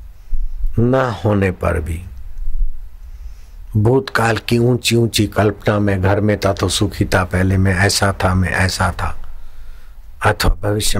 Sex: male